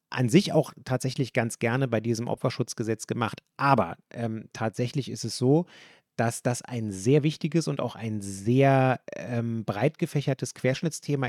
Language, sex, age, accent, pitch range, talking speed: German, male, 30-49, German, 110-135 Hz, 155 wpm